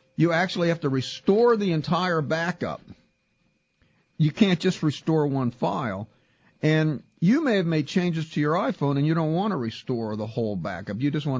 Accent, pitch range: American, 120-160 Hz